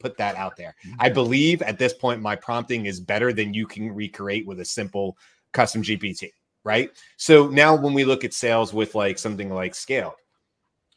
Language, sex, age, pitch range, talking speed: English, male, 30-49, 105-125 Hz, 190 wpm